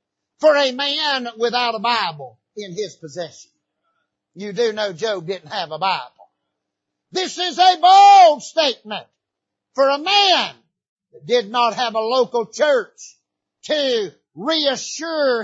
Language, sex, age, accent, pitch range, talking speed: English, male, 50-69, American, 200-290 Hz, 130 wpm